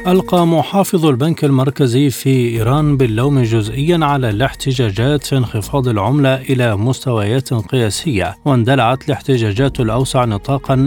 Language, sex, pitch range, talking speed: Arabic, male, 120-145 Hz, 110 wpm